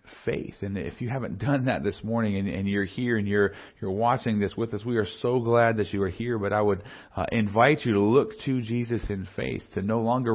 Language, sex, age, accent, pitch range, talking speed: English, male, 40-59, American, 105-125 Hz, 275 wpm